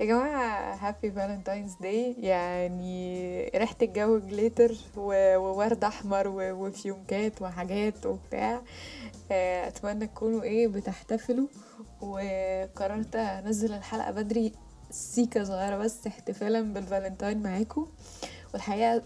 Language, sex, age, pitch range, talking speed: Arabic, female, 10-29, 195-230 Hz, 90 wpm